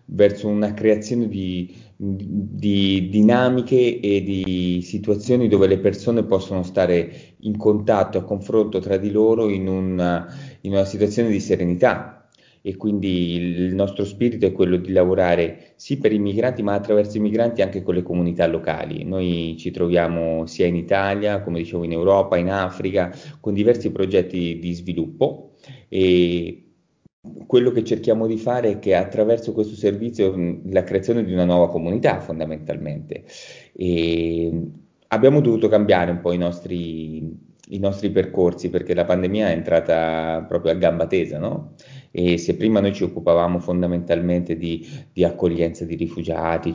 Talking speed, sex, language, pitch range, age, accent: 150 wpm, male, Italian, 85-105 Hz, 30-49, native